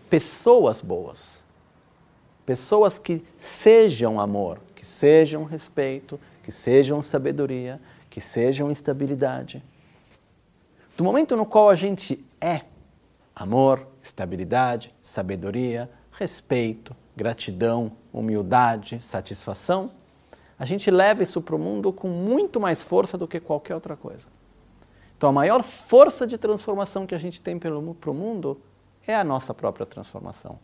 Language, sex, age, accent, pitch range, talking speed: Italian, male, 50-69, Brazilian, 120-175 Hz, 125 wpm